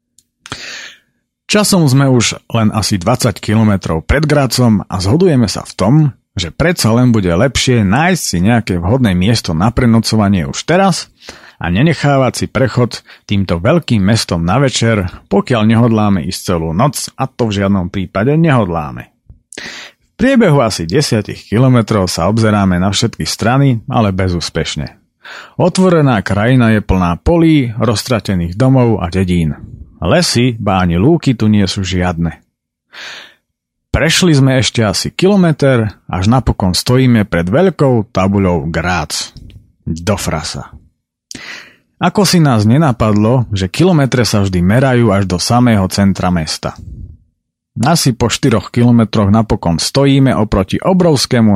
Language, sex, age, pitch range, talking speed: Slovak, male, 40-59, 95-130 Hz, 130 wpm